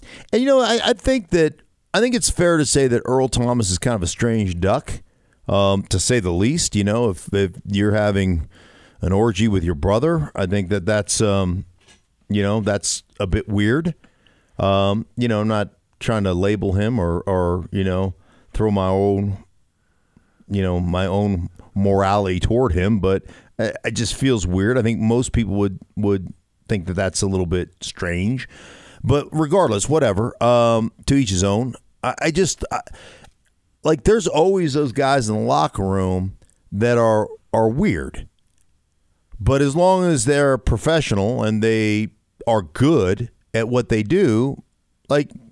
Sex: male